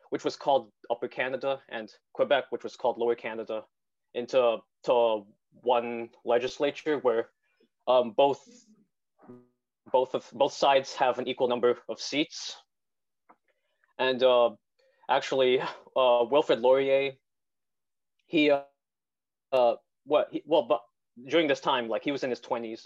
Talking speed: 135 wpm